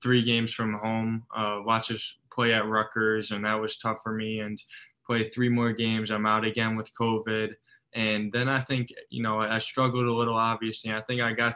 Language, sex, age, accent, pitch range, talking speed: English, male, 10-29, American, 105-115 Hz, 215 wpm